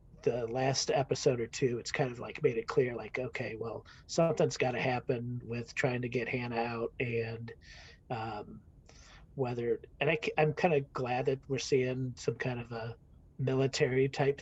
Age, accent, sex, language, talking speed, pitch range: 40-59, American, male, English, 170 wpm, 115-145 Hz